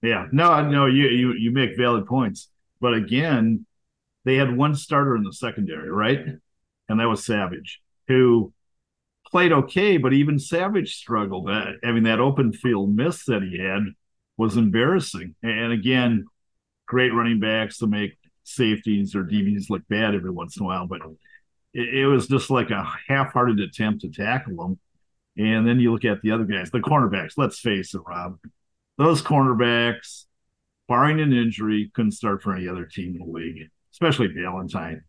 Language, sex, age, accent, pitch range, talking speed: English, male, 50-69, American, 100-130 Hz, 170 wpm